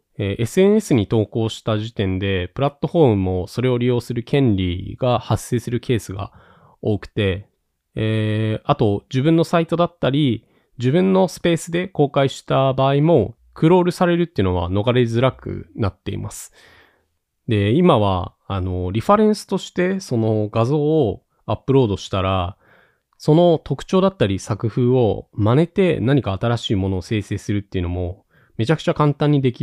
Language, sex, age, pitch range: Japanese, male, 20-39, 100-140 Hz